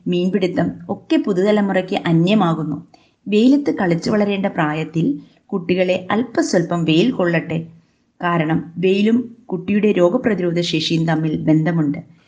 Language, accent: Malayalam, native